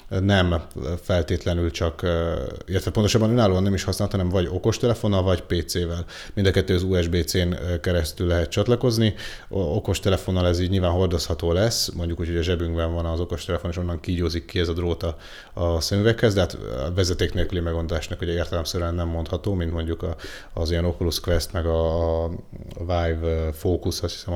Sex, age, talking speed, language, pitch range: male, 30-49, 165 wpm, Hungarian, 85-100 Hz